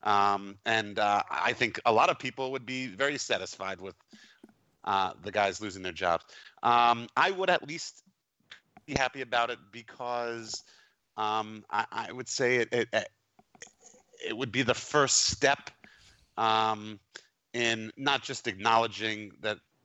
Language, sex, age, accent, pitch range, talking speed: English, male, 30-49, American, 105-125 Hz, 150 wpm